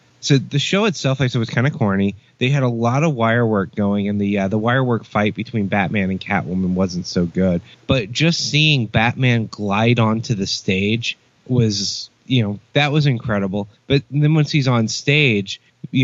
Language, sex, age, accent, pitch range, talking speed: English, male, 20-39, American, 110-135 Hz, 200 wpm